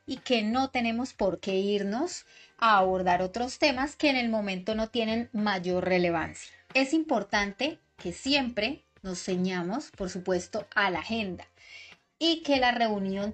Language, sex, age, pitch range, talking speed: Spanish, female, 30-49, 195-260 Hz, 155 wpm